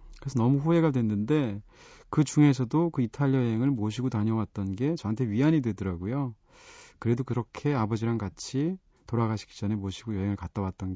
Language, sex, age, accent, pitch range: Korean, male, 30-49, native, 105-150 Hz